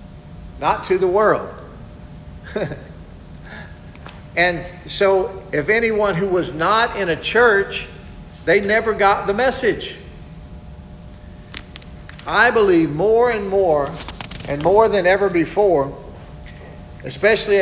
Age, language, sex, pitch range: 50-69, English, male, 170-205 Hz